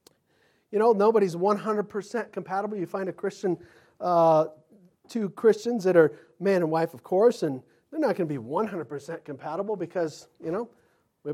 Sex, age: male, 40-59